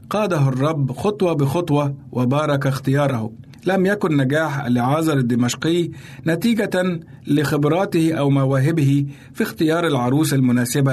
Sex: male